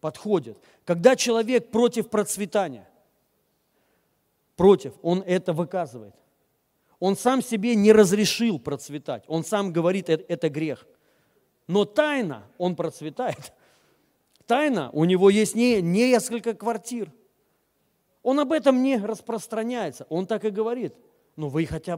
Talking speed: 125 wpm